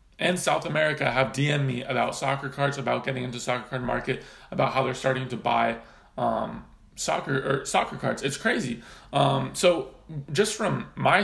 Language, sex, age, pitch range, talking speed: English, male, 20-39, 130-170 Hz, 175 wpm